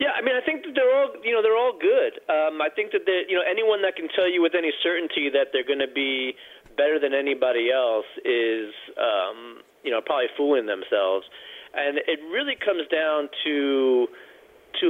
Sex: male